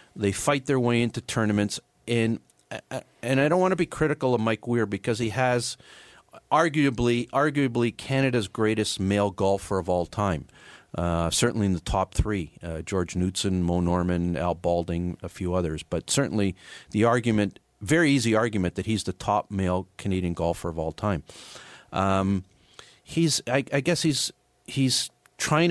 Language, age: English, 40-59